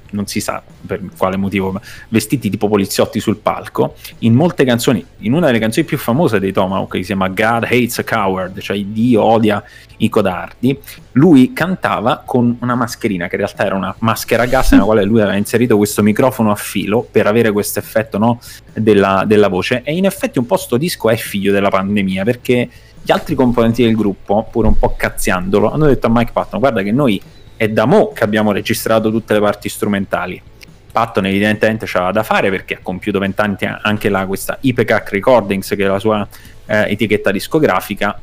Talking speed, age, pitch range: 195 wpm, 30-49, 100-115 Hz